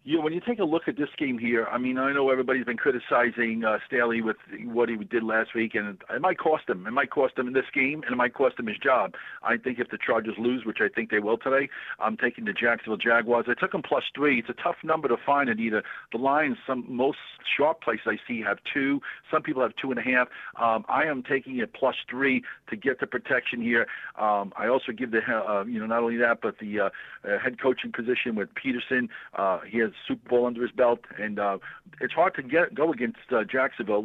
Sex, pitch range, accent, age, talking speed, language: male, 110-130 Hz, American, 50-69, 250 wpm, English